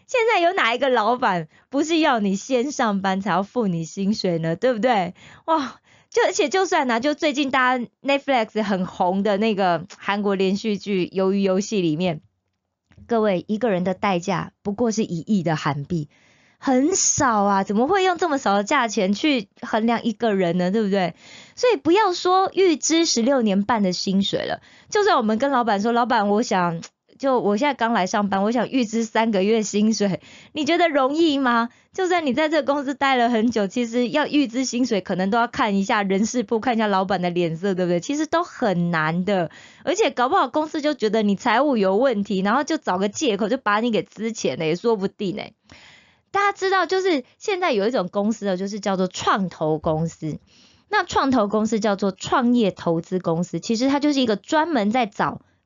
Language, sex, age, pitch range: Korean, female, 20-39, 195-275 Hz